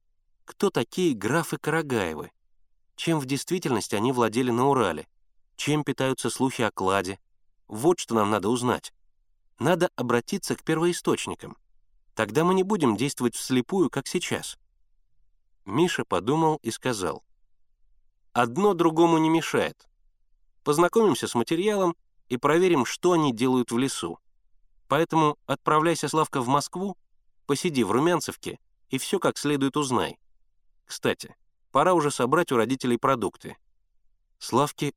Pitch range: 110-160 Hz